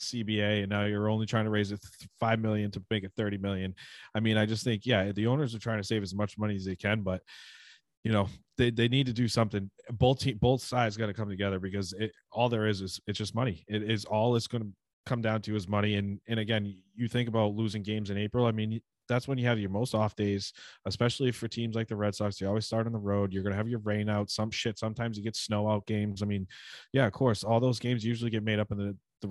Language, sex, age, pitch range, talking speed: English, male, 20-39, 100-115 Hz, 270 wpm